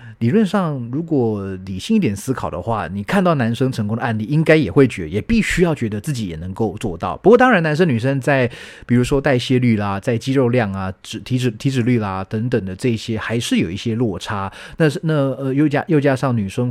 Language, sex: Chinese, male